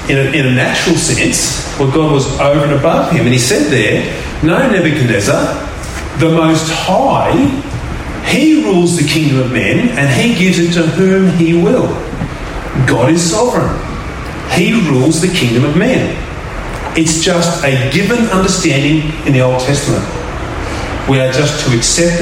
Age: 40-59